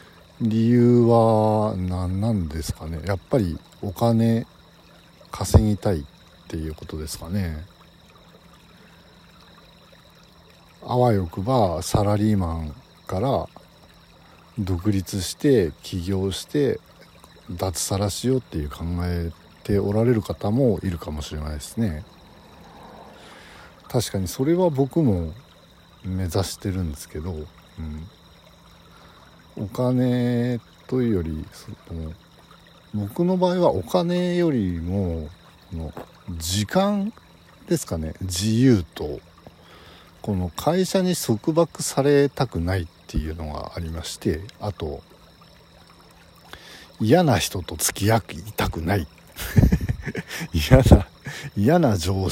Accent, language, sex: native, Japanese, male